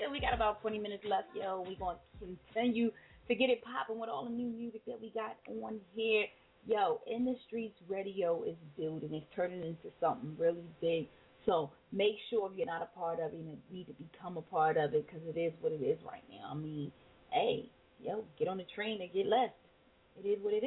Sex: female